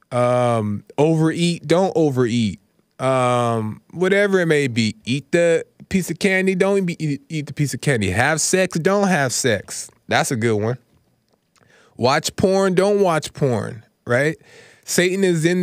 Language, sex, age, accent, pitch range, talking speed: English, male, 20-39, American, 130-170 Hz, 145 wpm